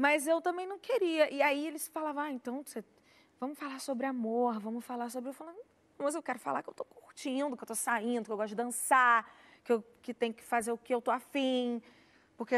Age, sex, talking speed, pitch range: 20-39, female, 225 wpm, 210-275 Hz